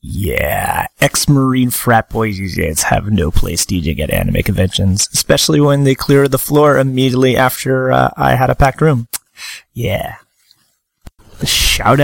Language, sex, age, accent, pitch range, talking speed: English, male, 30-49, American, 100-140 Hz, 140 wpm